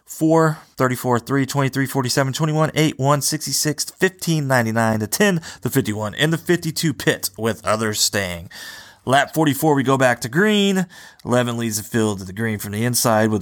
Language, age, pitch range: English, 30-49, 110-155 Hz